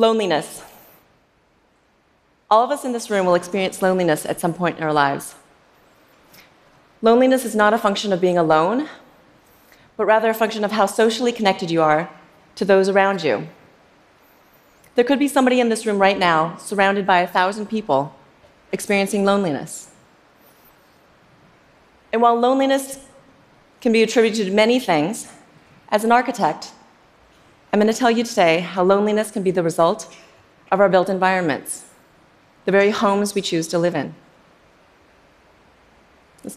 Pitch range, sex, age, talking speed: 175-220 Hz, female, 30-49, 150 wpm